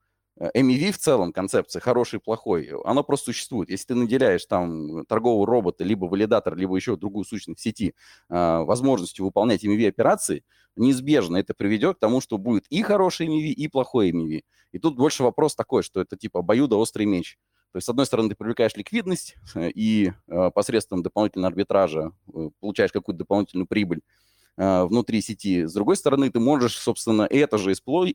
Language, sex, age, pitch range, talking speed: Russian, male, 30-49, 95-120 Hz, 180 wpm